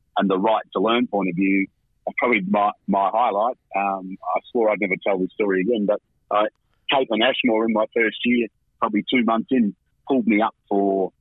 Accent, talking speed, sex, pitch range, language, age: Australian, 205 wpm, male, 95-115 Hz, English, 40-59